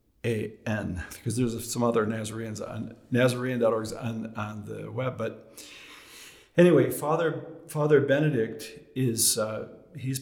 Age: 50-69